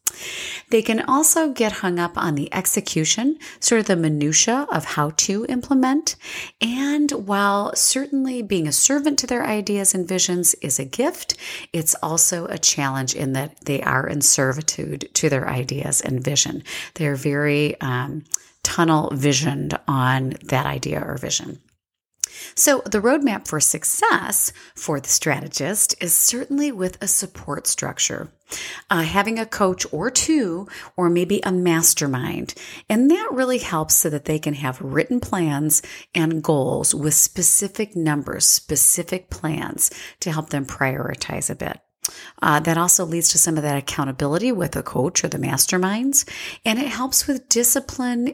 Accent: American